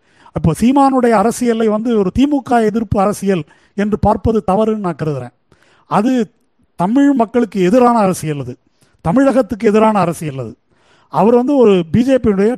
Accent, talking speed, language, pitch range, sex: native, 115 wpm, Tamil, 185-240 Hz, male